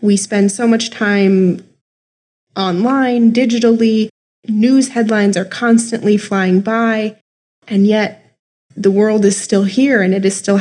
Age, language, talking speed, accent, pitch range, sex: 20-39, English, 135 wpm, American, 195-225 Hz, female